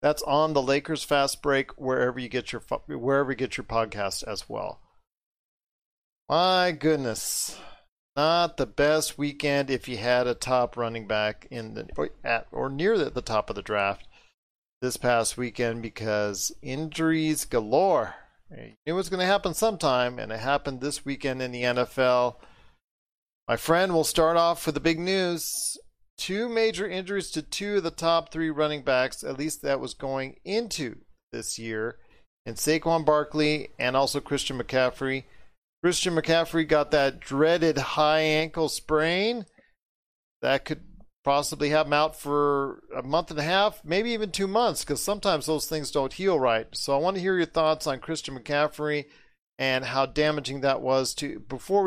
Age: 40-59